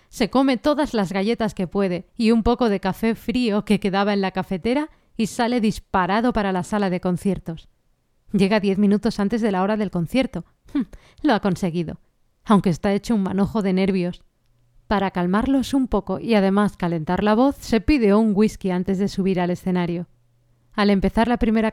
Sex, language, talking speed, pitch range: female, Spanish, 190 wpm, 190-235 Hz